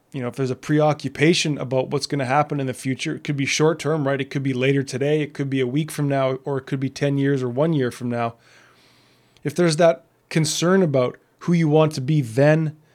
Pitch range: 135-155 Hz